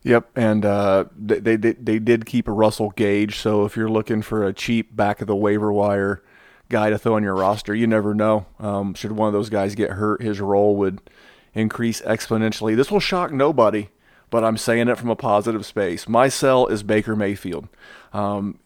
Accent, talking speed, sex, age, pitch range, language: American, 205 wpm, male, 30-49, 105-120 Hz, English